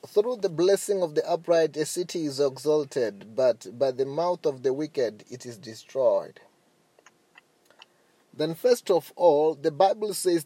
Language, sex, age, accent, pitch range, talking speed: English, male, 30-49, South African, 150-190 Hz, 155 wpm